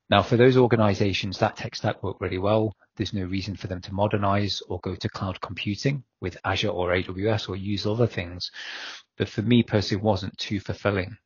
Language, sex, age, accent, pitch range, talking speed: English, male, 30-49, British, 95-110 Hz, 200 wpm